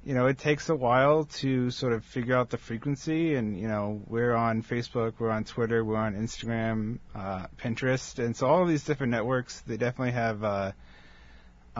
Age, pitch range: 30-49, 100-120 Hz